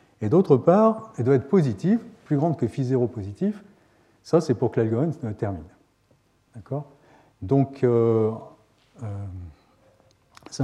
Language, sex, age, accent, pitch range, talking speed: French, male, 40-59, French, 105-145 Hz, 135 wpm